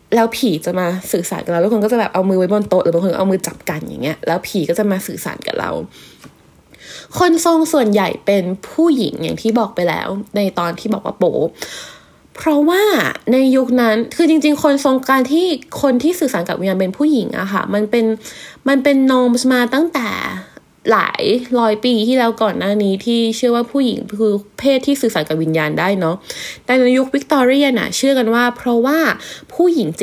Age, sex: 20-39, female